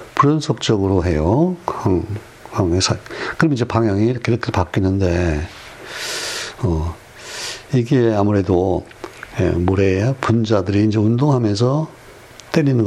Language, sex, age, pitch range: Korean, male, 60-79, 95-125 Hz